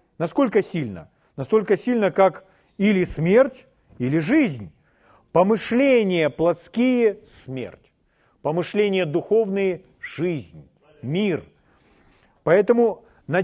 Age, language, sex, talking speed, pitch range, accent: 40-59, Russian, male, 80 wpm, 160-225 Hz, native